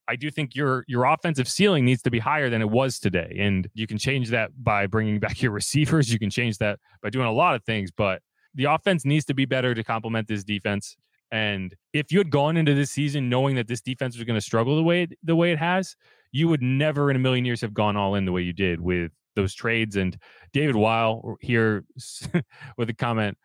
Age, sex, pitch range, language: 20-39, male, 115-155 Hz, English